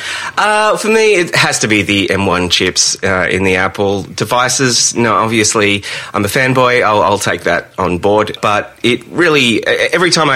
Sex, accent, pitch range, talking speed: male, Australian, 100-125 Hz, 180 wpm